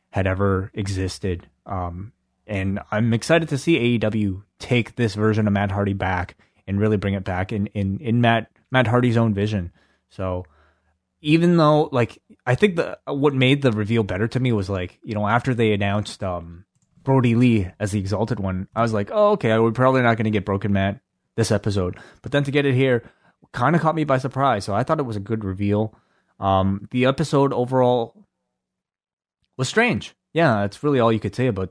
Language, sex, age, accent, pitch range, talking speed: English, male, 20-39, American, 95-120 Hz, 200 wpm